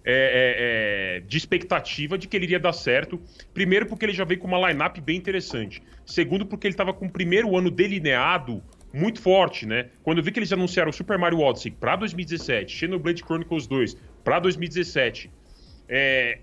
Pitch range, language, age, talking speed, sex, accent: 135-190 Hz, English, 20-39, 185 wpm, male, Brazilian